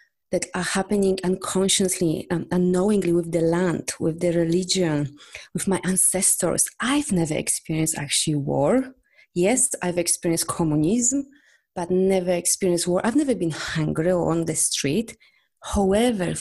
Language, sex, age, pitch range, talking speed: English, female, 30-49, 165-195 Hz, 135 wpm